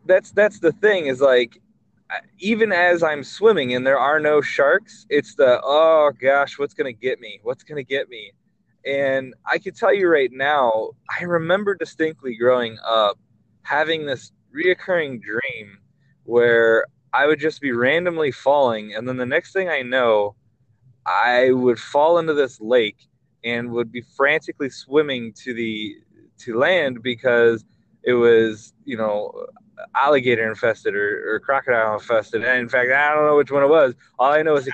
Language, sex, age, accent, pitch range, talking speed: English, male, 20-39, American, 125-205 Hz, 175 wpm